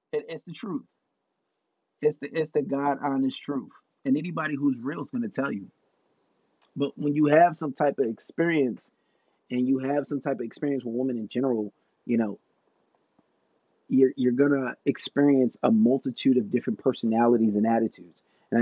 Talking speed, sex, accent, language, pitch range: 170 wpm, male, American, English, 120-155 Hz